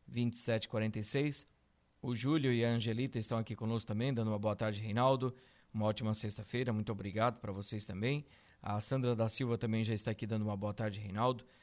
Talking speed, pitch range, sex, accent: 185 wpm, 110-130 Hz, male, Brazilian